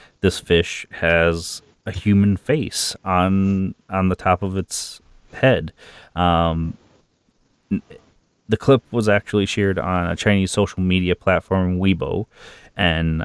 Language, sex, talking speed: English, male, 120 wpm